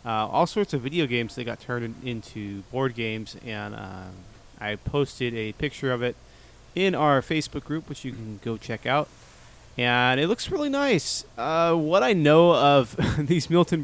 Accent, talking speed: American, 180 wpm